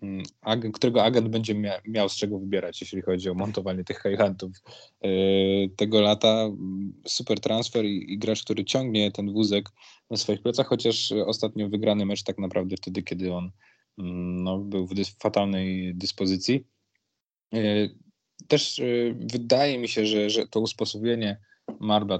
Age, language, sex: 20-39, Polish, male